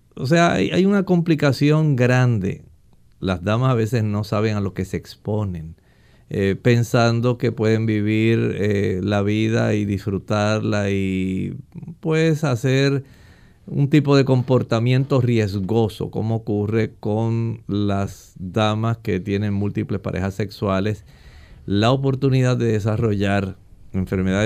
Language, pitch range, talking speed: Spanish, 100-125 Hz, 125 wpm